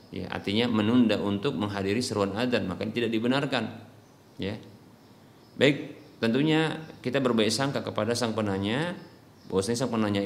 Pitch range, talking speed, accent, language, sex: 105-130 Hz, 130 wpm, native, Indonesian, male